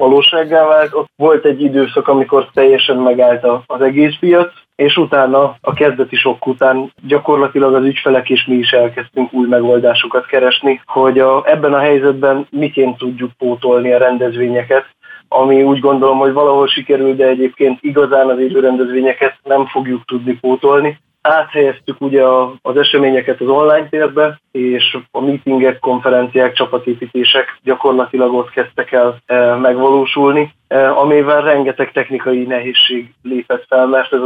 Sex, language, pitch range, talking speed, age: male, Hungarian, 125-140 Hz, 135 wpm, 20-39